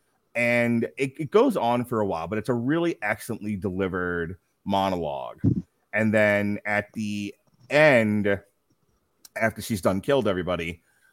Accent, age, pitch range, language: American, 30-49, 105-125 Hz, English